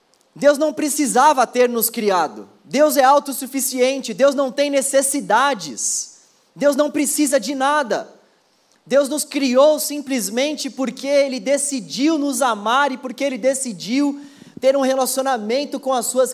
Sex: male